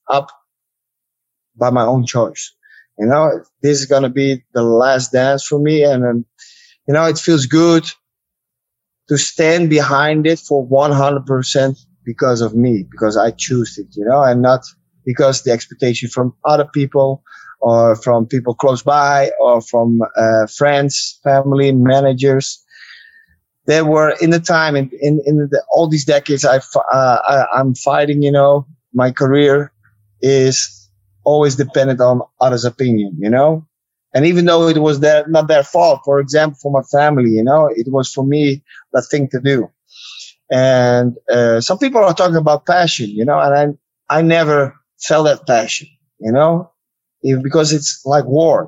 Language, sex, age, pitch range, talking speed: English, male, 20-39, 125-155 Hz, 165 wpm